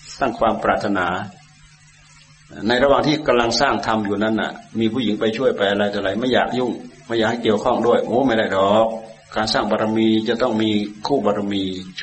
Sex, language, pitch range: male, Thai, 110-130 Hz